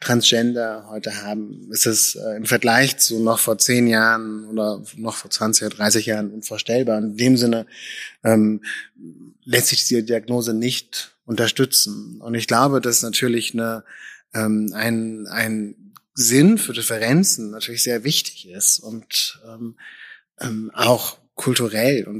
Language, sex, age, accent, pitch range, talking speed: German, male, 20-39, German, 110-120 Hz, 140 wpm